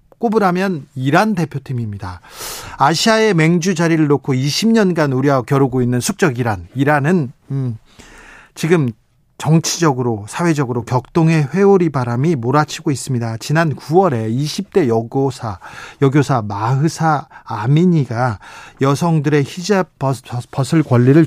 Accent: native